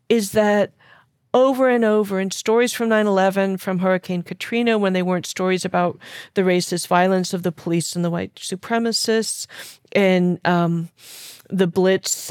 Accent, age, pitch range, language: American, 40-59, 190-280 Hz, English